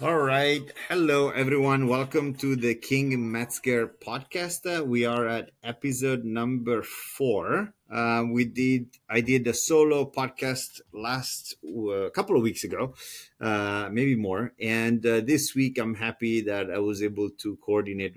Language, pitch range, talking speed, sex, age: English, 105-130 Hz, 155 wpm, male, 30-49